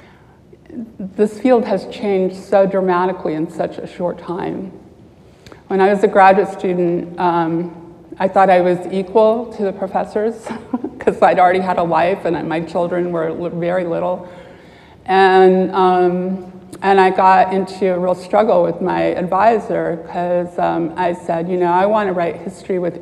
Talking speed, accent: 155 wpm, American